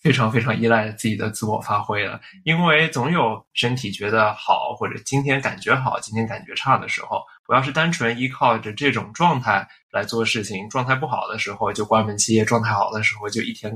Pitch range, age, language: 110-140 Hz, 20-39, Chinese